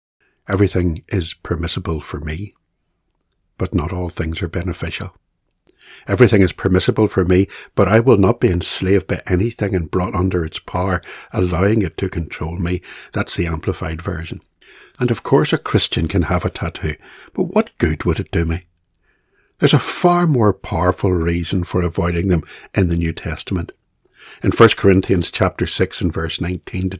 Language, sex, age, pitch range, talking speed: English, male, 60-79, 85-100 Hz, 170 wpm